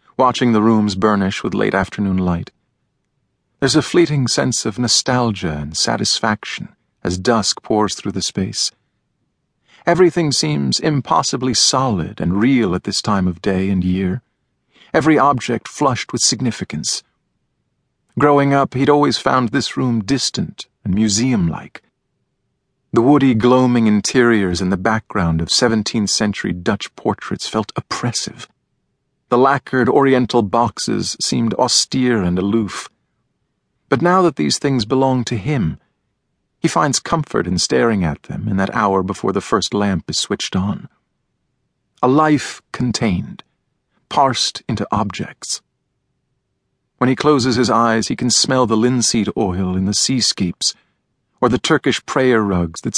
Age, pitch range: 50-69, 100-130 Hz